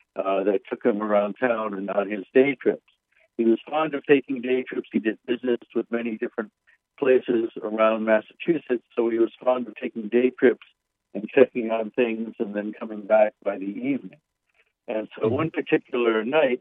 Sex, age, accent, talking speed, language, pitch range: male, 60-79, American, 185 wpm, English, 110-130 Hz